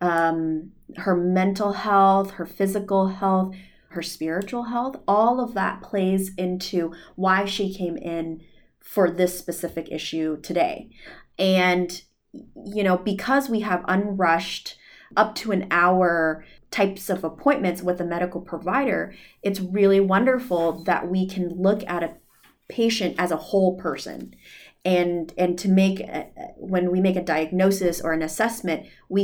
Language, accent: English, American